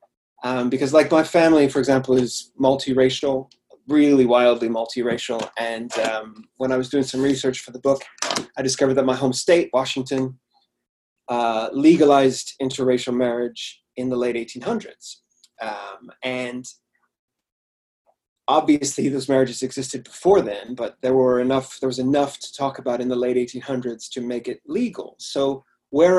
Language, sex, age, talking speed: English, male, 30-49, 150 wpm